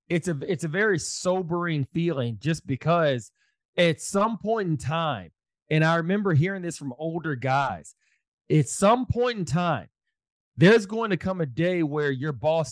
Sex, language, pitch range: male, English, 140-185 Hz